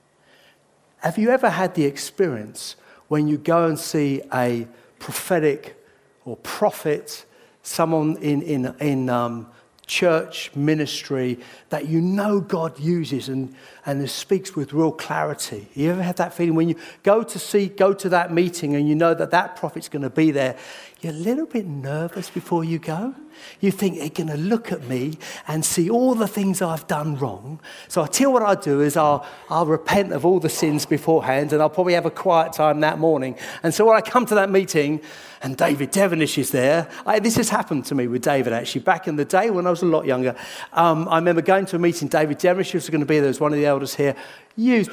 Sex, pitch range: male, 140-185 Hz